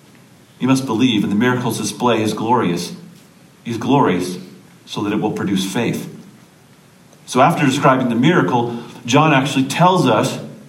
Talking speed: 145 wpm